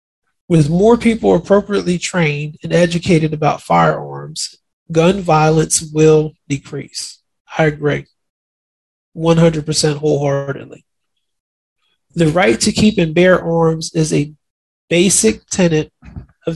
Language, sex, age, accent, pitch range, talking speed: English, male, 30-49, American, 150-175 Hz, 105 wpm